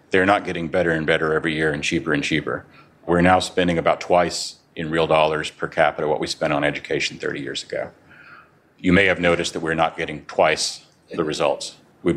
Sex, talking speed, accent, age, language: male, 205 wpm, American, 40-59, English